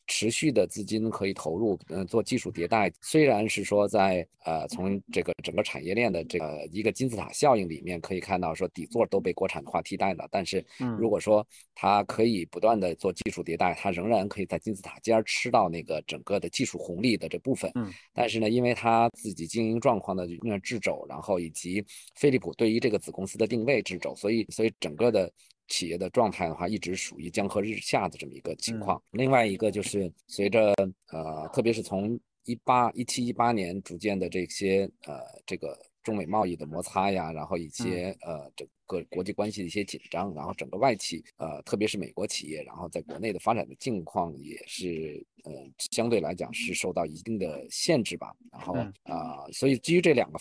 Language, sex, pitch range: Chinese, male, 90-115 Hz